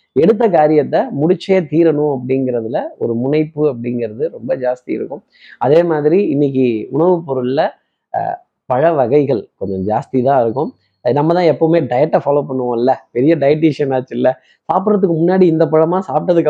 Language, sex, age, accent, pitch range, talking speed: Tamil, male, 20-39, native, 130-170 Hz, 130 wpm